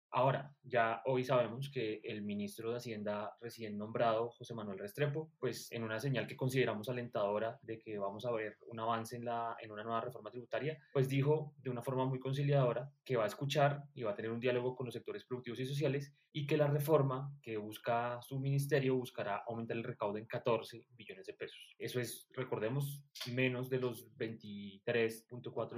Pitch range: 110-130 Hz